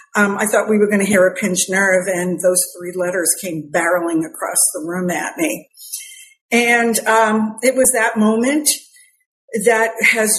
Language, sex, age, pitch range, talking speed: English, female, 50-69, 195-230 Hz, 175 wpm